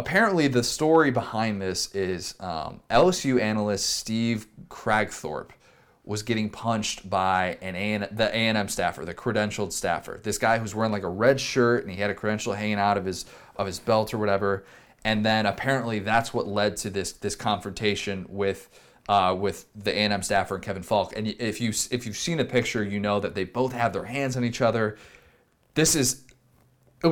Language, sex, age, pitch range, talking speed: English, male, 20-39, 100-115 Hz, 195 wpm